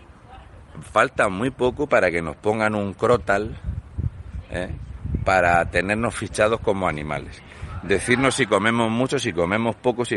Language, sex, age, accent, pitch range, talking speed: Spanish, male, 60-79, Spanish, 90-120 Hz, 130 wpm